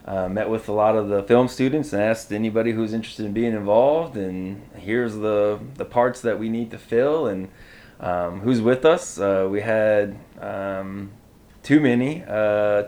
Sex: male